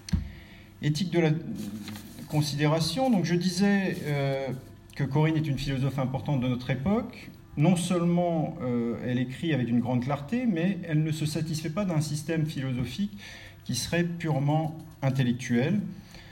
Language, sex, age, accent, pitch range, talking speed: French, male, 40-59, French, 115-160 Hz, 145 wpm